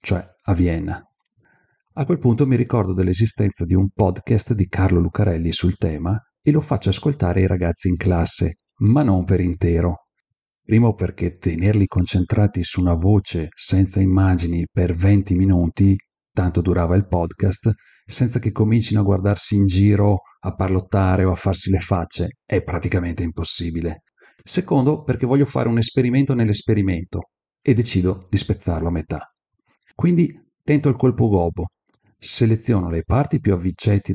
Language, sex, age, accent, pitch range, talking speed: Italian, male, 40-59, native, 90-110 Hz, 150 wpm